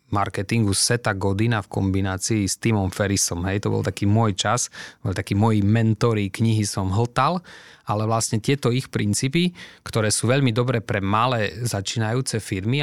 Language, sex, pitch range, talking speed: Slovak, male, 100-115 Hz, 160 wpm